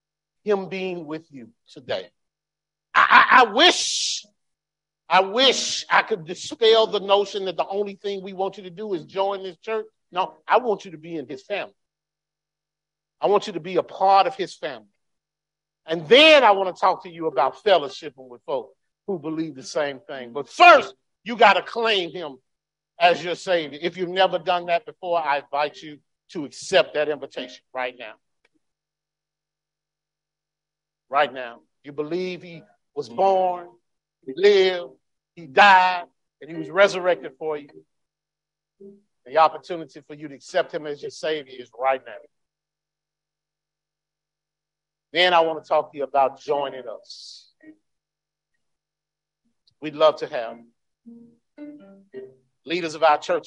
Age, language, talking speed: 50-69, English, 155 wpm